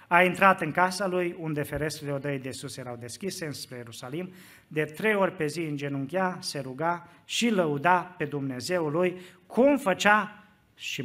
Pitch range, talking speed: 140-180 Hz, 170 wpm